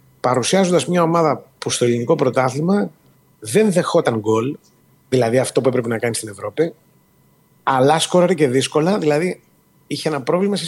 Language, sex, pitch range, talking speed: Greek, male, 125-180 Hz, 150 wpm